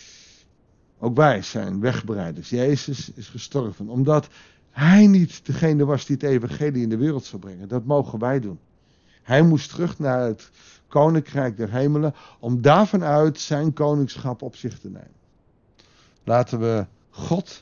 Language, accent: Dutch, Dutch